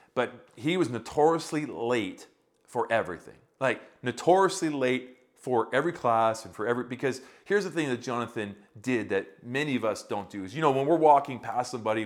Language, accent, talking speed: English, American, 185 wpm